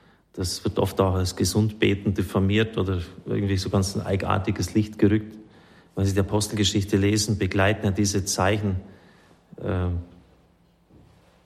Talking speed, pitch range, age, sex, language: 135 wpm, 95-110 Hz, 40-59, male, German